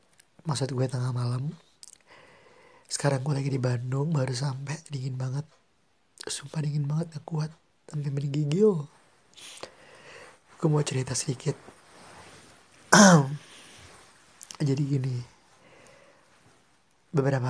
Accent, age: Indonesian, 30-49